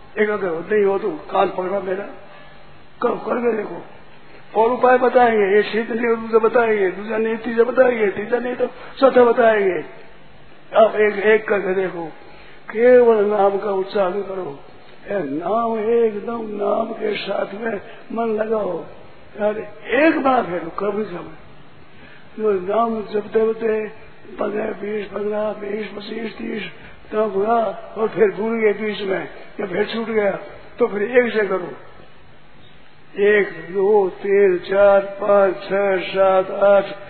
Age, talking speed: 50-69, 125 wpm